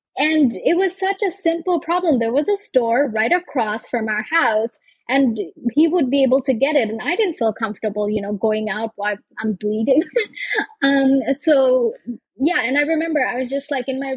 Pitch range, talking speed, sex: 215-285 Hz, 205 wpm, female